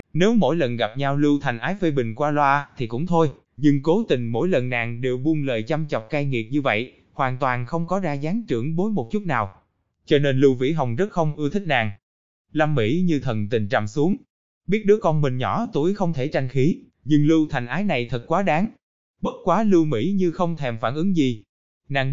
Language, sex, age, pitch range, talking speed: Vietnamese, male, 20-39, 125-175 Hz, 235 wpm